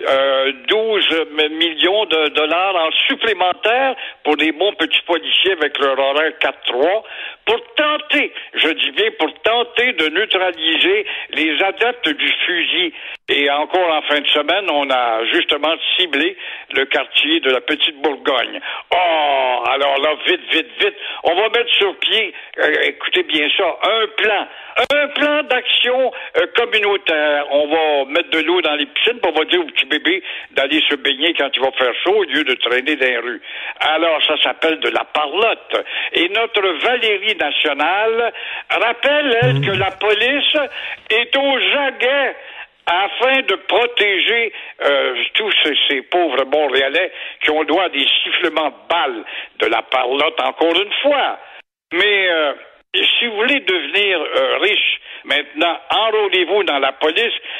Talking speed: 160 wpm